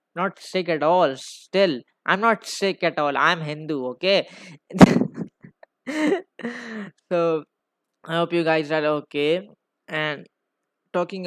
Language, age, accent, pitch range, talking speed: Hindi, 20-39, native, 145-180 Hz, 115 wpm